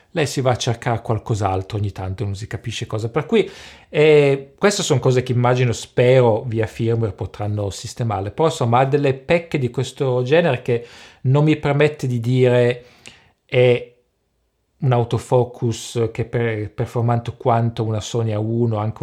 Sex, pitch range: male, 105-125 Hz